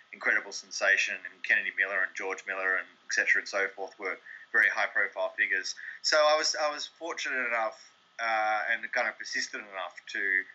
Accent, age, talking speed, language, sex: Australian, 30-49, 180 wpm, English, male